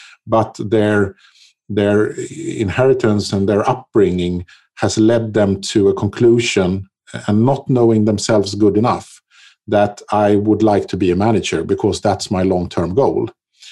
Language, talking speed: English, 140 wpm